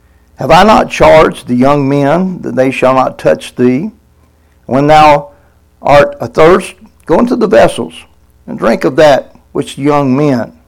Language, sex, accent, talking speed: English, male, American, 165 wpm